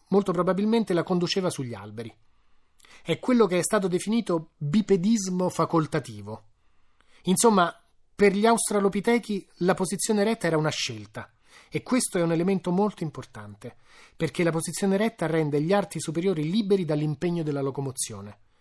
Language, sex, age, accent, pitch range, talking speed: Italian, male, 30-49, native, 140-190 Hz, 140 wpm